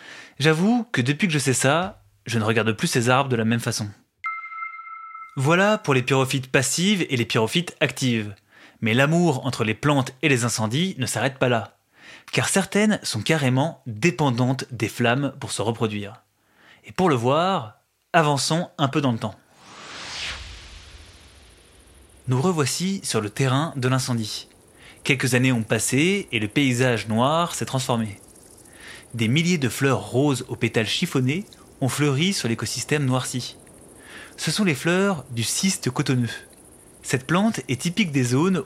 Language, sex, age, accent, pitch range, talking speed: French, male, 20-39, French, 115-160 Hz, 155 wpm